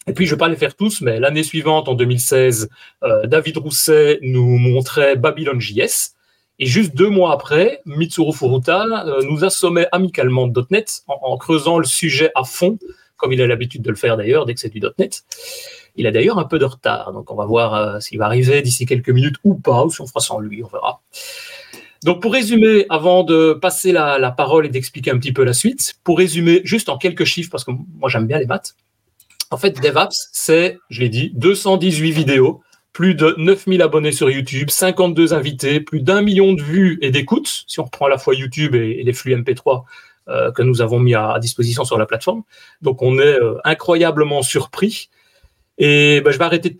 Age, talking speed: 30-49, 215 wpm